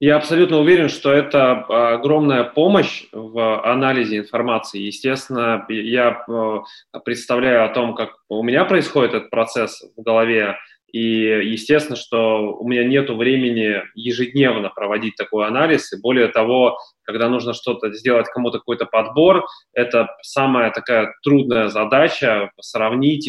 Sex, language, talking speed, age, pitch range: male, Russian, 130 wpm, 20-39, 115-145 Hz